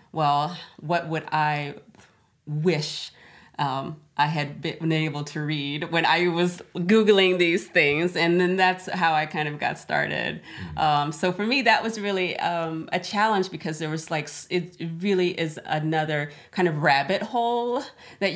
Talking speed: 165 wpm